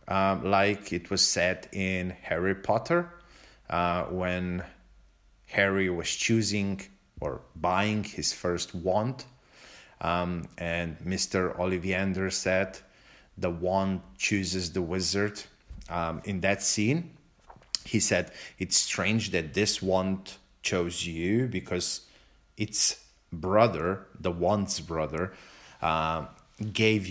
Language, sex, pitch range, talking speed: English, male, 90-110 Hz, 110 wpm